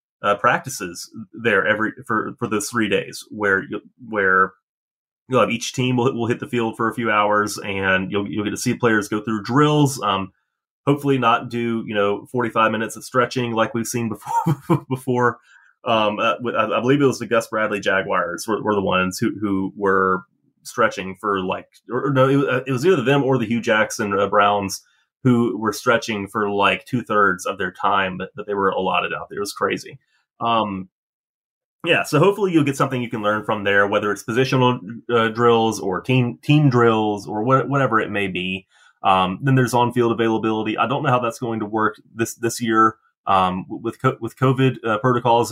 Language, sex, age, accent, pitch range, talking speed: English, male, 30-49, American, 105-125 Hz, 205 wpm